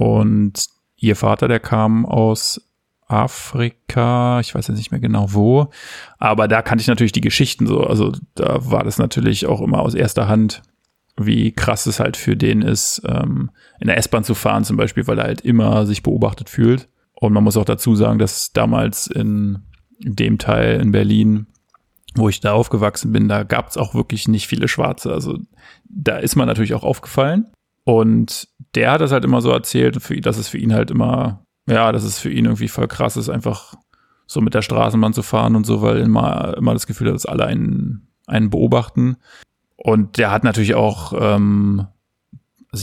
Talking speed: 195 wpm